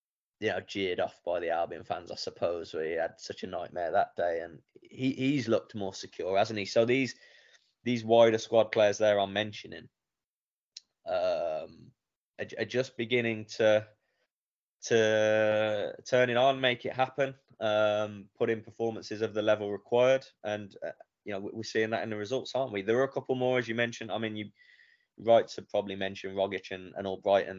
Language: English